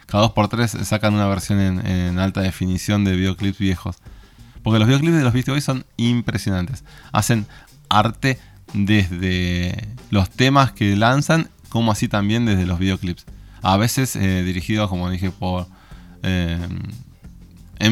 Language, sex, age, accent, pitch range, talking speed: Spanish, male, 20-39, Argentinian, 95-120 Hz, 135 wpm